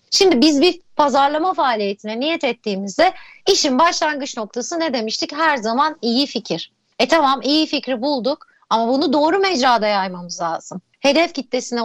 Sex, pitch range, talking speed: female, 225-315 Hz, 145 wpm